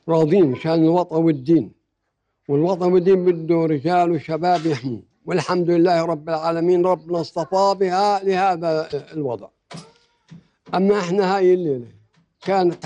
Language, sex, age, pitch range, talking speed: Arabic, male, 60-79, 150-185 Hz, 110 wpm